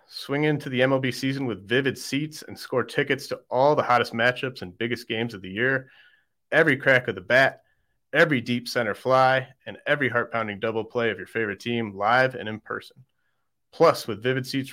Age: 30-49